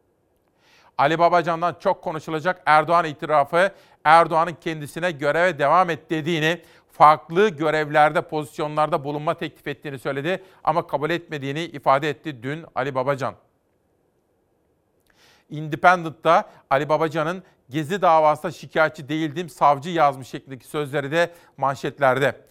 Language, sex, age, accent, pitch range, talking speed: Turkish, male, 40-59, native, 150-180 Hz, 105 wpm